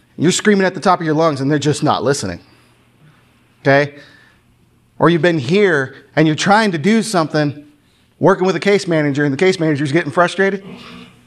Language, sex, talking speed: English, male, 185 wpm